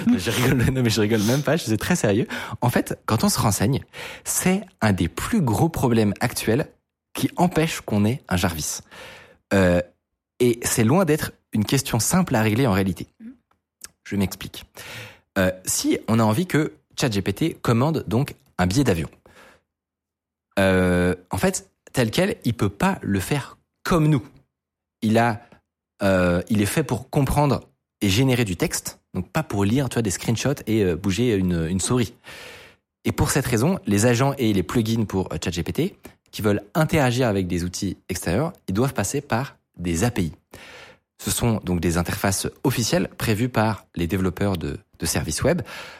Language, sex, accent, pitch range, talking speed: French, male, French, 95-130 Hz, 170 wpm